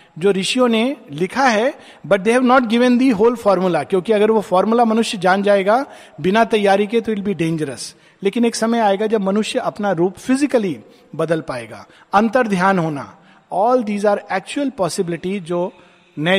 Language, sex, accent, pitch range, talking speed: Hindi, male, native, 165-215 Hz, 165 wpm